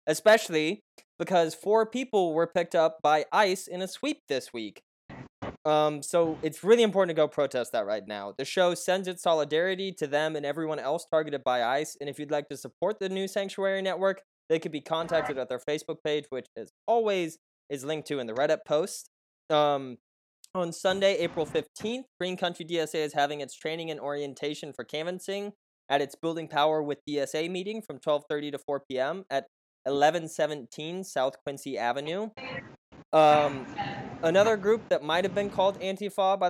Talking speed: 180 wpm